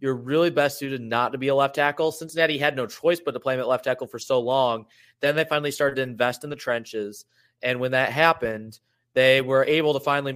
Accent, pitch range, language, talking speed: American, 130-160 Hz, English, 245 wpm